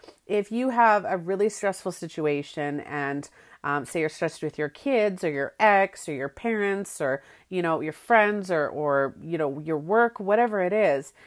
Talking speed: 185 wpm